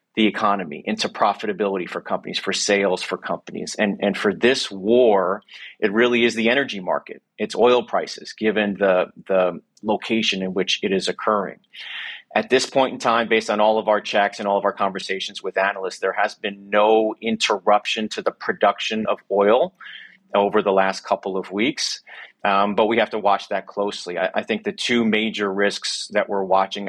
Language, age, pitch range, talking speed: English, 30-49, 95-110 Hz, 190 wpm